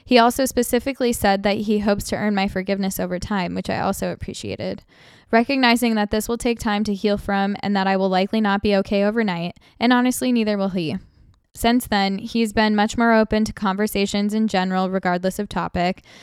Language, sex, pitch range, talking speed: English, female, 195-230 Hz, 200 wpm